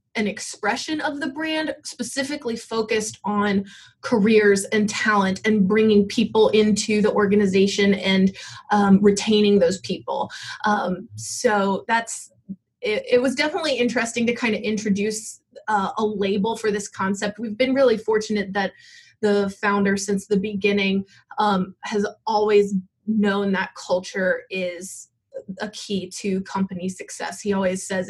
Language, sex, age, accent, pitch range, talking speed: English, female, 20-39, American, 195-215 Hz, 140 wpm